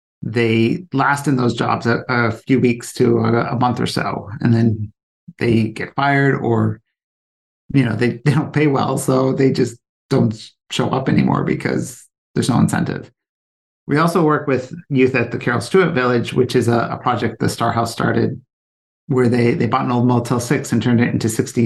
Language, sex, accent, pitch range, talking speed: English, male, American, 115-135 Hz, 195 wpm